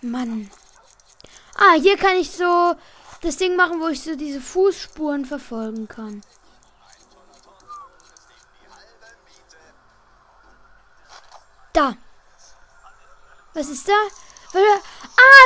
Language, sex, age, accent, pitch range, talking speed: German, female, 20-39, German, 280-380 Hz, 80 wpm